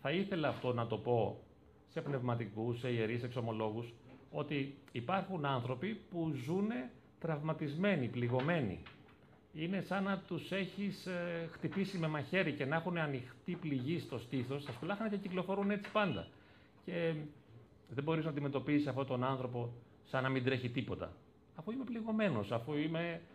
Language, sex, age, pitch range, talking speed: Greek, male, 40-59, 120-165 Hz, 150 wpm